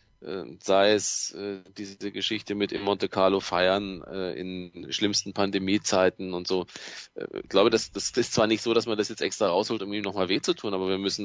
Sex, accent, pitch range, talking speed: male, German, 95-115 Hz, 215 wpm